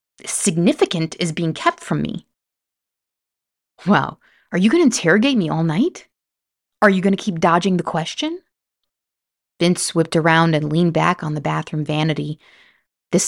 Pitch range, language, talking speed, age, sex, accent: 155-220 Hz, English, 155 wpm, 20-39, female, American